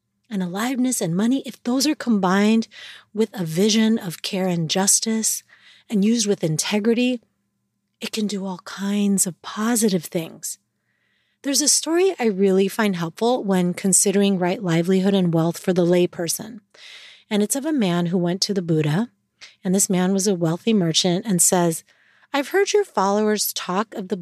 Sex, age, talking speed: female, 30-49, 170 wpm